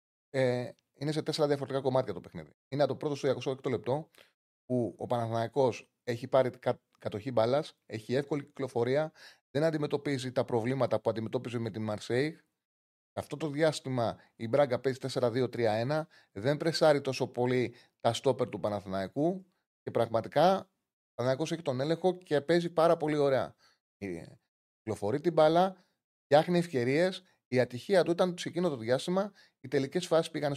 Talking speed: 145 wpm